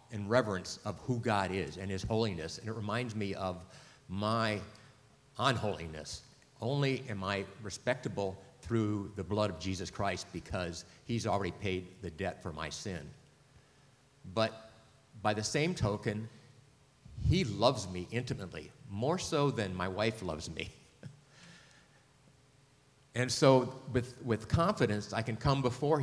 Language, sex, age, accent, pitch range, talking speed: English, male, 50-69, American, 100-130 Hz, 140 wpm